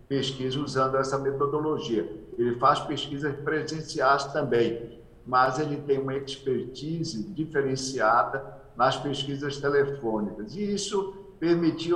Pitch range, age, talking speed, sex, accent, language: 130-160 Hz, 60-79, 105 wpm, male, Brazilian, English